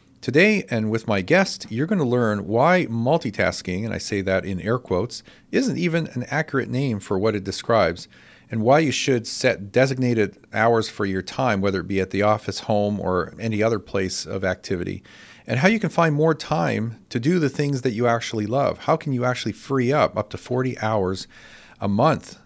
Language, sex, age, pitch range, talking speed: English, male, 40-59, 105-130 Hz, 205 wpm